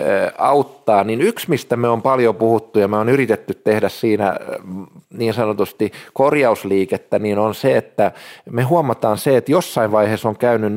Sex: male